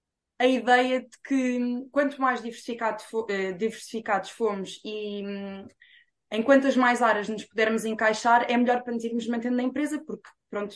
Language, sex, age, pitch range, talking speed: Portuguese, female, 20-39, 215-260 Hz, 150 wpm